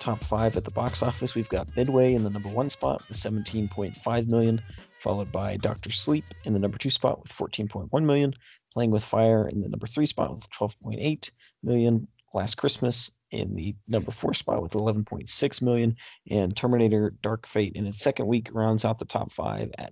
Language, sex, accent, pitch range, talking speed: English, male, American, 105-120 Hz, 195 wpm